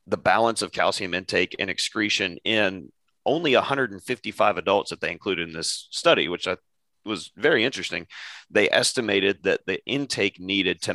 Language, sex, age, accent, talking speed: English, male, 30-49, American, 155 wpm